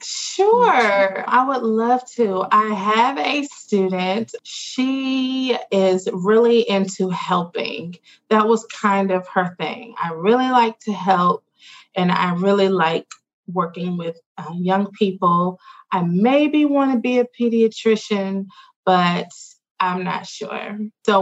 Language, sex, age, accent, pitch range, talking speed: English, female, 20-39, American, 180-225 Hz, 130 wpm